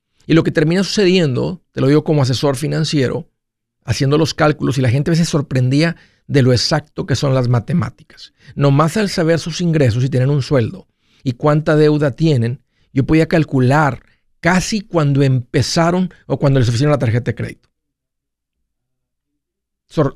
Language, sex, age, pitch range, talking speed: Spanish, male, 50-69, 115-160 Hz, 165 wpm